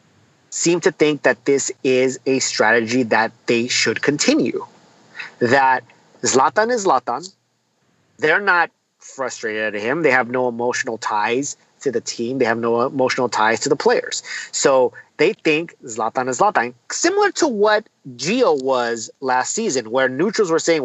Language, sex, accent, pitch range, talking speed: English, male, American, 130-190 Hz, 155 wpm